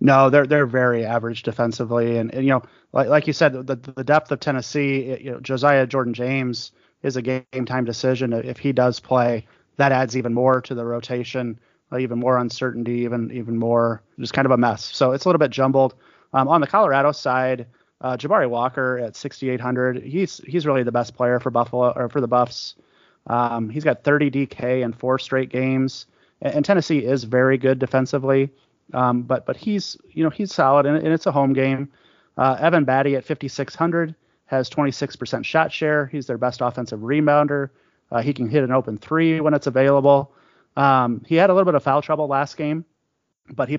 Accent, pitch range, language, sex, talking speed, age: American, 125-145 Hz, English, male, 205 wpm, 30-49